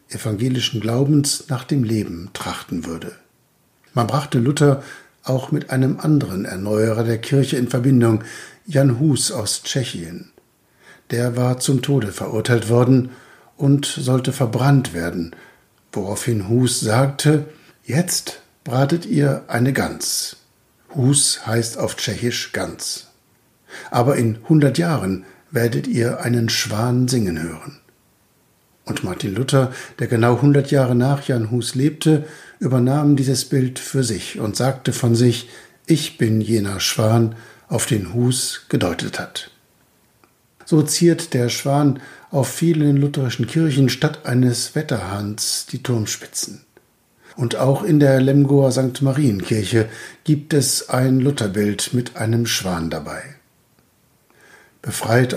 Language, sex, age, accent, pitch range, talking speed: German, male, 60-79, German, 115-140 Hz, 125 wpm